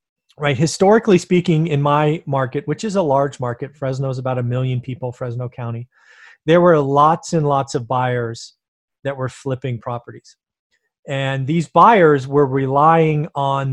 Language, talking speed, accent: English, 155 wpm, American